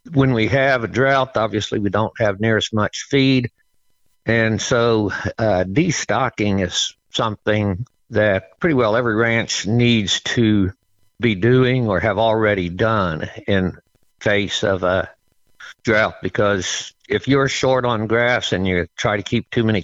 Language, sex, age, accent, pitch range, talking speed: English, male, 60-79, American, 100-120 Hz, 150 wpm